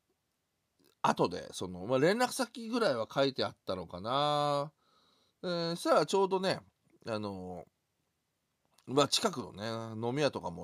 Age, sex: 40-59, male